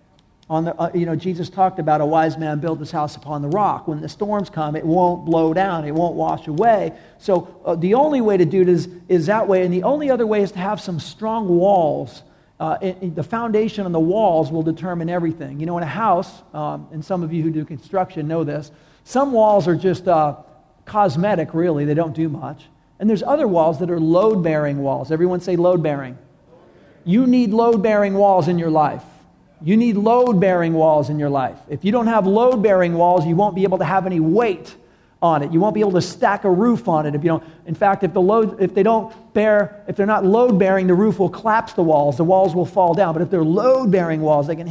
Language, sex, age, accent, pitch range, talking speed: English, male, 50-69, American, 160-205 Hz, 235 wpm